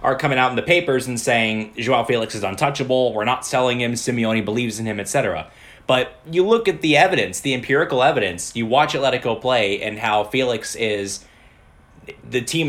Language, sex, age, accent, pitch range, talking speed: English, male, 20-39, American, 110-135 Hz, 190 wpm